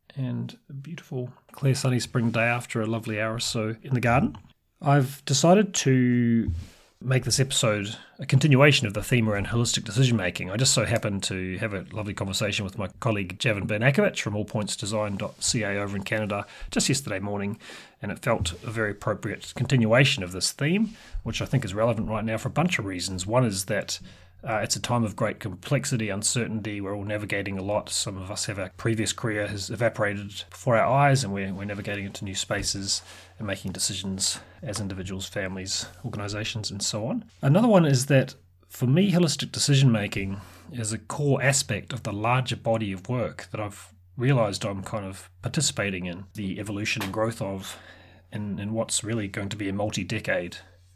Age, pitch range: 30-49, 100-125 Hz